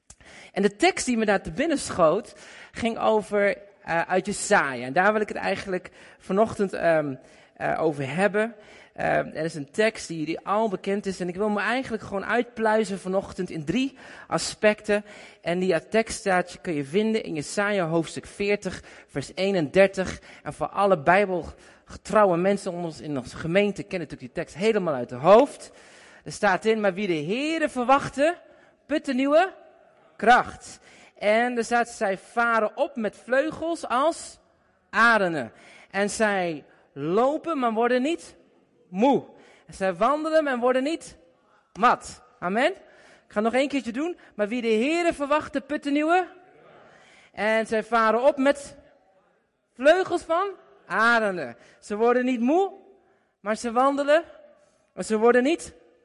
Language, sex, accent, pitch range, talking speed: Dutch, male, Dutch, 190-280 Hz, 160 wpm